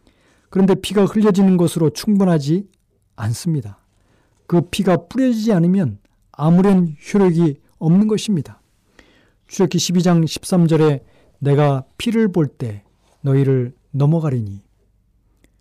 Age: 40-59